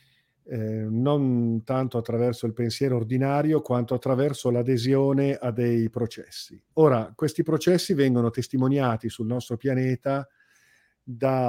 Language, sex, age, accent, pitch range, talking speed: Italian, male, 40-59, native, 120-140 Hz, 115 wpm